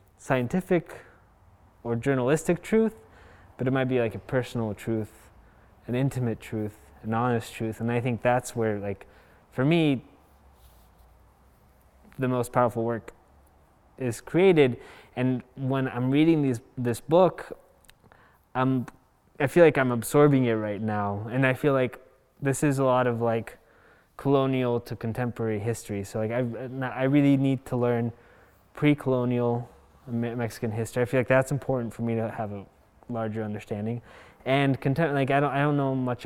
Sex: male